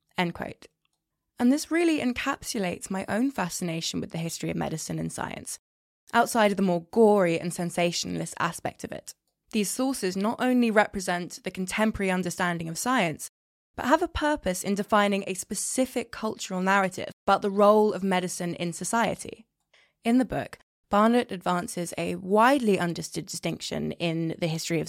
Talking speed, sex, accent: 160 wpm, female, British